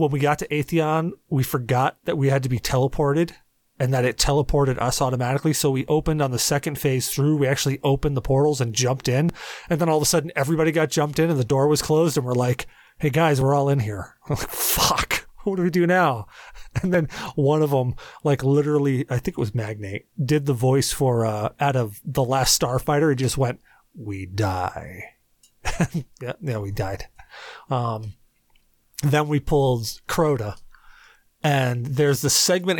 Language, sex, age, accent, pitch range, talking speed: English, male, 30-49, American, 125-150 Hz, 195 wpm